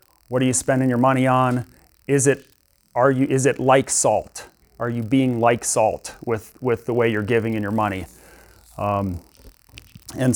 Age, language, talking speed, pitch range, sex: 30-49, English, 180 wpm, 115-140 Hz, male